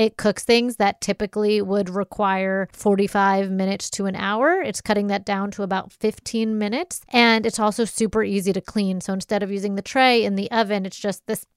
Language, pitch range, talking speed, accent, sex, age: English, 195-220 Hz, 200 wpm, American, female, 30-49